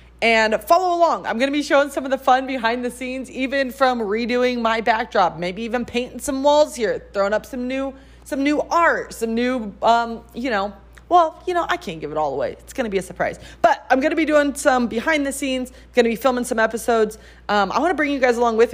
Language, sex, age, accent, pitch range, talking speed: English, female, 30-49, American, 205-275 Hz, 235 wpm